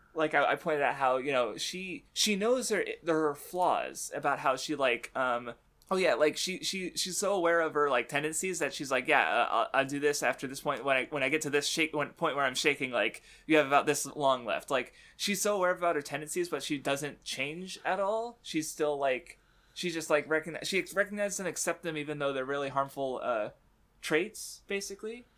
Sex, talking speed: male, 220 wpm